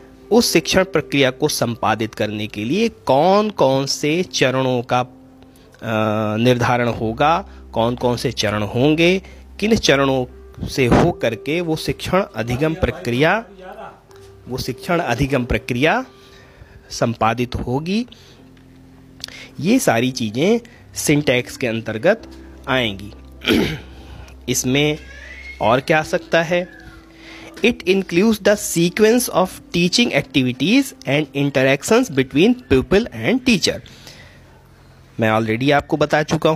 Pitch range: 115-185 Hz